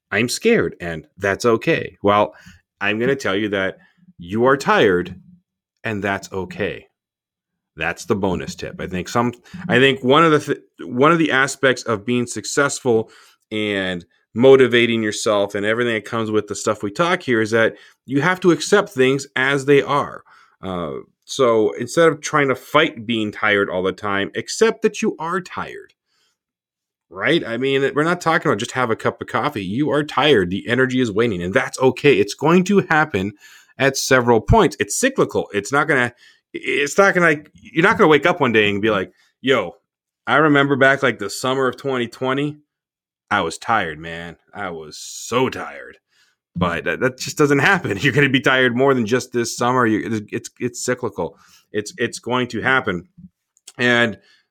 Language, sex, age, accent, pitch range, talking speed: English, male, 30-49, American, 110-150 Hz, 190 wpm